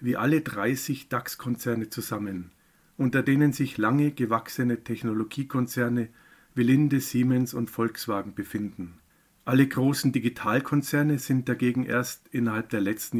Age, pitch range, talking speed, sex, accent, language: 50-69, 110-135 Hz, 120 wpm, male, German, German